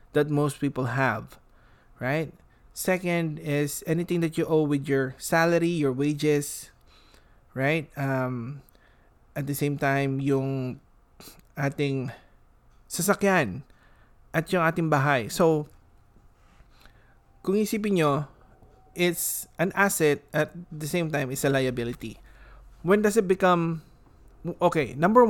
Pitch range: 135-175 Hz